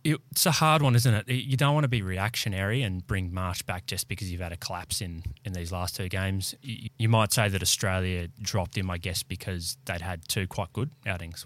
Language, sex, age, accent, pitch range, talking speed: English, male, 20-39, Australian, 90-125 Hz, 230 wpm